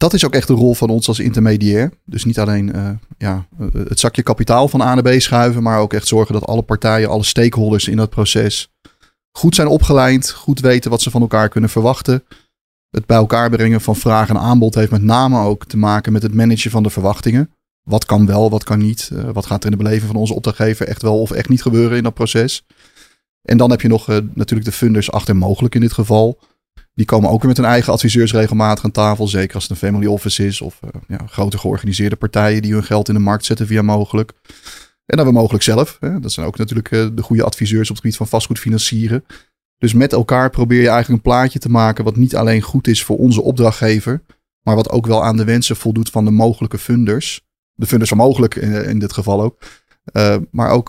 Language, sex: Dutch, male